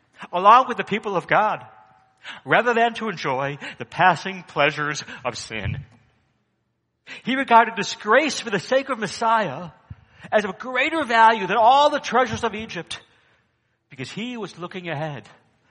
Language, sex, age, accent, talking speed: English, male, 60-79, American, 150 wpm